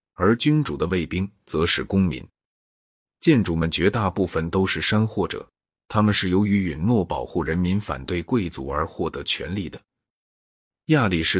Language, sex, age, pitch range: Chinese, male, 30-49, 85-105 Hz